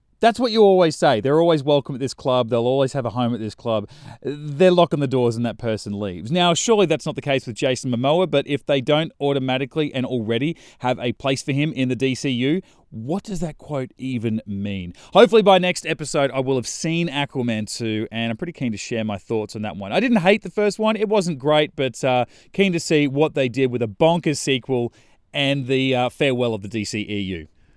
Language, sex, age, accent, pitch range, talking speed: English, male, 30-49, Australian, 120-170 Hz, 230 wpm